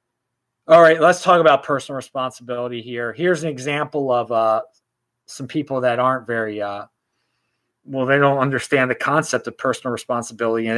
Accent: American